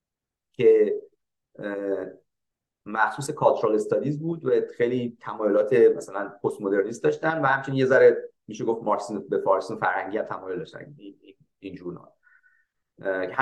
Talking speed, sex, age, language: 115 wpm, male, 30-49, Persian